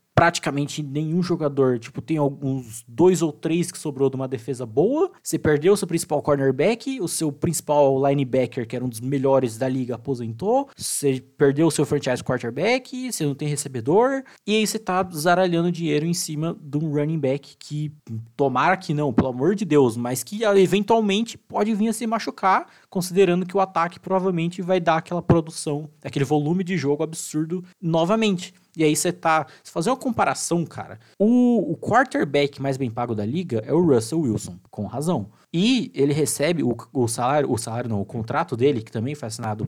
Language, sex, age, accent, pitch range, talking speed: Portuguese, male, 20-39, Brazilian, 135-185 Hz, 190 wpm